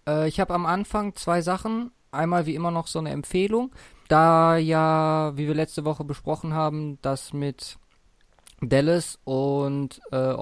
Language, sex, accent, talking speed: German, male, German, 150 wpm